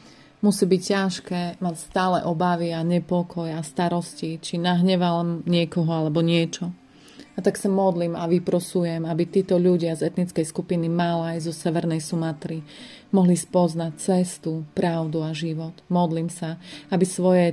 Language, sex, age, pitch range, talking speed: Slovak, female, 30-49, 165-180 Hz, 135 wpm